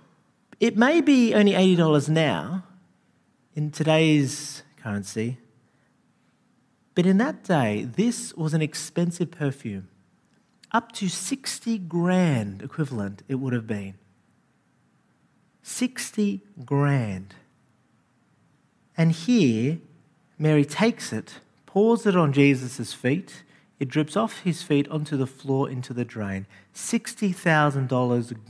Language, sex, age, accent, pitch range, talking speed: English, male, 40-59, Australian, 140-195 Hz, 105 wpm